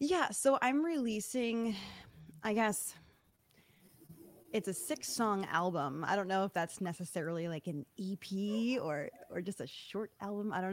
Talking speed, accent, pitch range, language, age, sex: 150 wpm, American, 160-210 Hz, English, 20-39, female